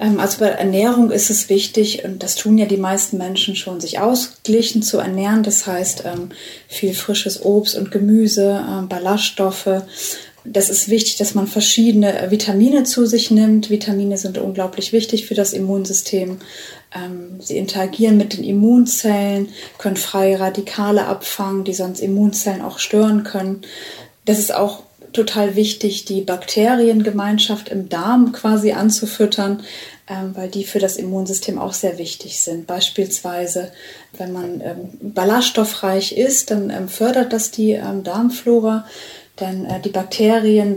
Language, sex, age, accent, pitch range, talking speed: German, female, 30-49, German, 190-215 Hz, 135 wpm